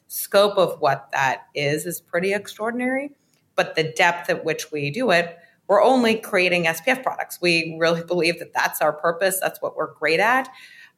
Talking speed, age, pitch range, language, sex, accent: 185 wpm, 30-49, 150-185 Hz, English, female, American